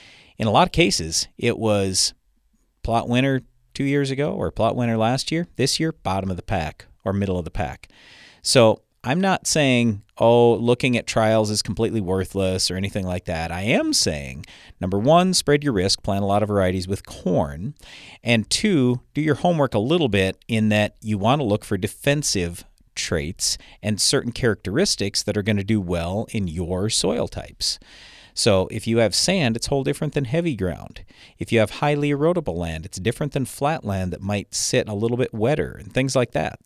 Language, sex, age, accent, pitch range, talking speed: English, male, 40-59, American, 95-130 Hz, 200 wpm